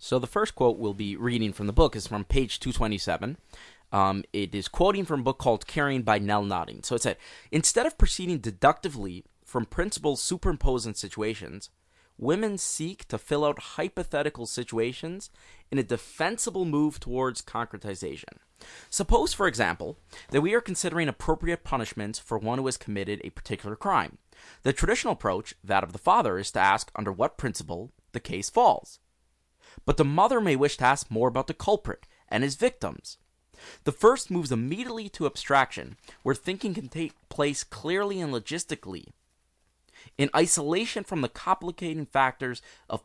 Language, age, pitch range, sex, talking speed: English, 20-39, 110-170 Hz, male, 165 wpm